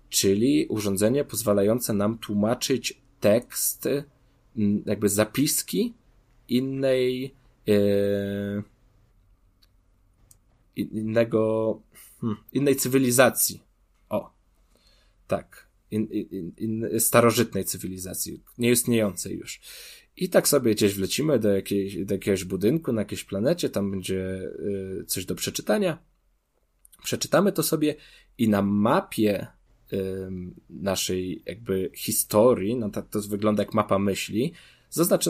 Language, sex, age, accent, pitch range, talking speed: Polish, male, 20-39, native, 100-125 Hz, 90 wpm